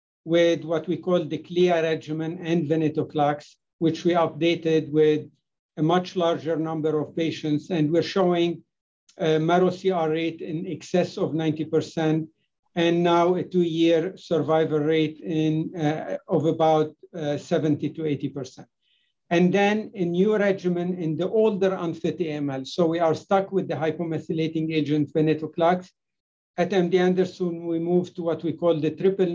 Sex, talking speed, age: male, 150 wpm, 60-79